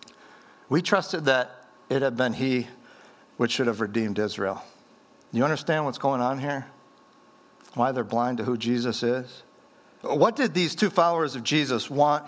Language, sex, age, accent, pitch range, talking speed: English, male, 50-69, American, 120-145 Hz, 160 wpm